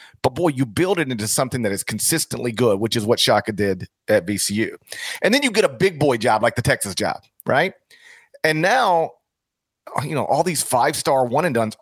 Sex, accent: male, American